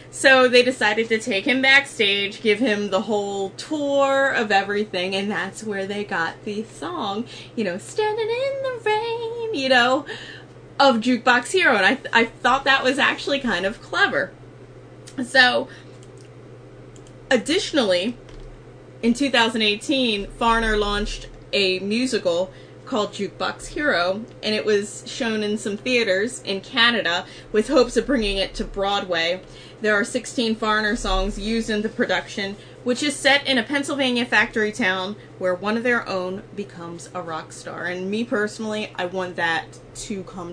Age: 20-39